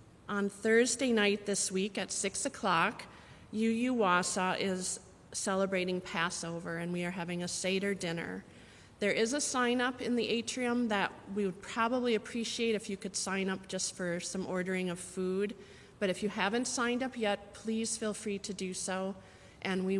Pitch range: 190-225 Hz